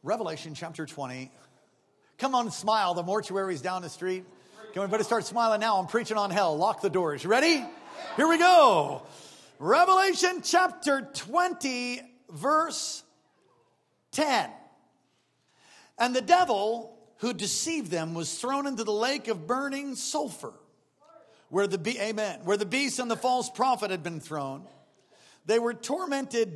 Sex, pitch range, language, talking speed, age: male, 205-265 Hz, English, 140 wpm, 50-69